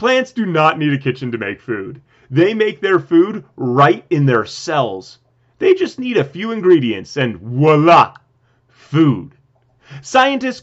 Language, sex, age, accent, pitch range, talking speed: English, male, 30-49, American, 125-185 Hz, 150 wpm